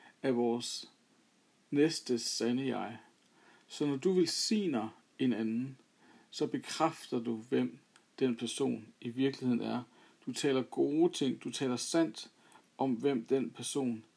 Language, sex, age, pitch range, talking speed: Danish, male, 50-69, 125-155 Hz, 130 wpm